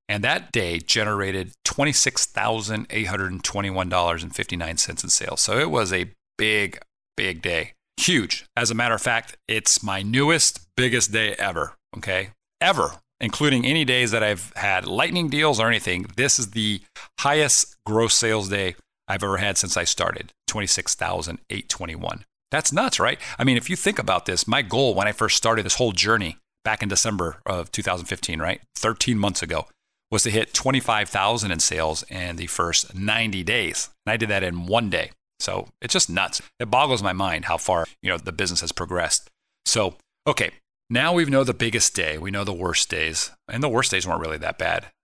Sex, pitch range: male, 95-120 Hz